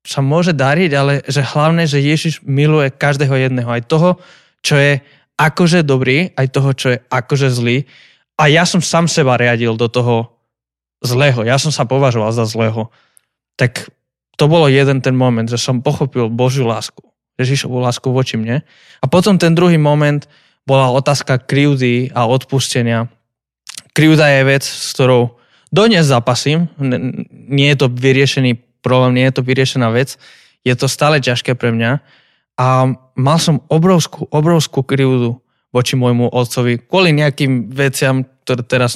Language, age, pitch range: Slovak, 20-39, 125-145 Hz